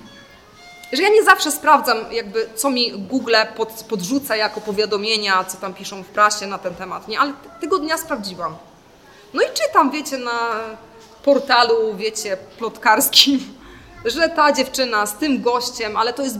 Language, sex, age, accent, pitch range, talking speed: Polish, female, 20-39, native, 200-265 Hz, 160 wpm